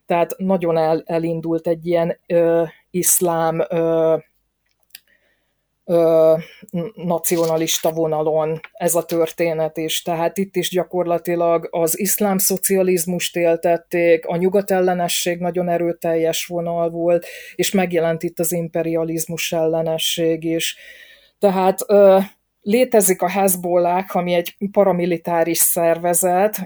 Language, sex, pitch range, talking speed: Hungarian, female, 165-185 Hz, 90 wpm